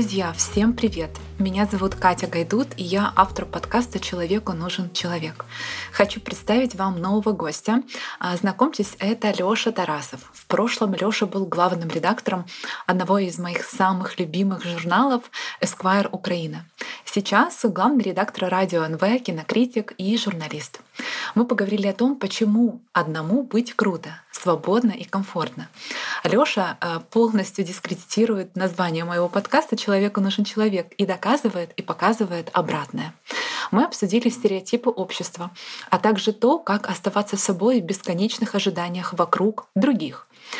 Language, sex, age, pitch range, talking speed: Russian, female, 20-39, 180-225 Hz, 125 wpm